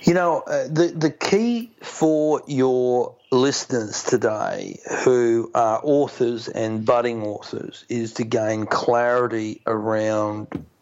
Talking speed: 115 wpm